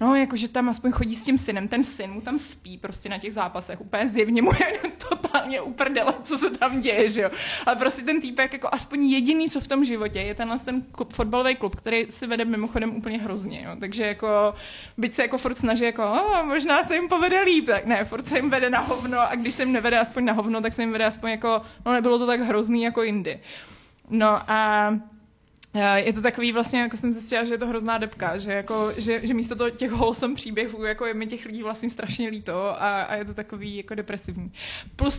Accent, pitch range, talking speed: native, 210-245 Hz, 230 wpm